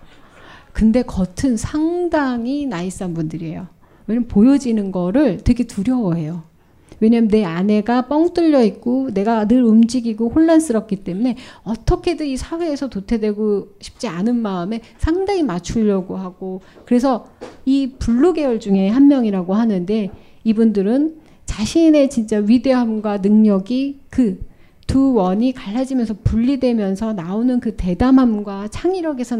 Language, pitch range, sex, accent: Korean, 200-270 Hz, female, native